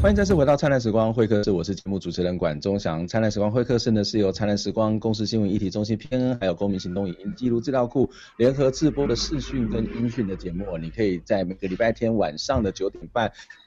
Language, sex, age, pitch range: Chinese, male, 30-49, 100-125 Hz